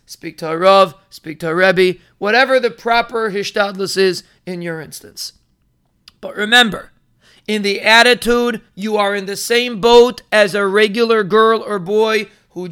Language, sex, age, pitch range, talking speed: English, male, 40-59, 195-240 Hz, 160 wpm